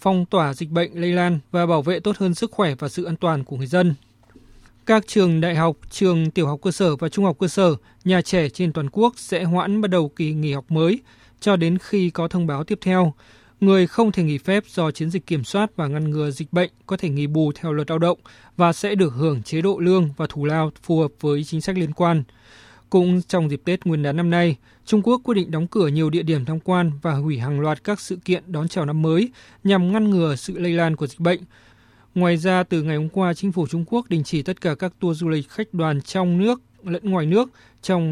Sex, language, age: male, Vietnamese, 20-39